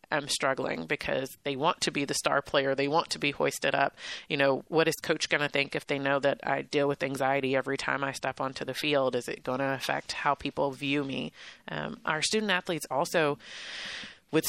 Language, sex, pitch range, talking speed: English, female, 140-160 Hz, 225 wpm